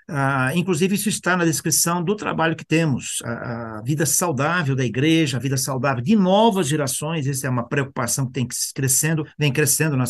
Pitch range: 130-165 Hz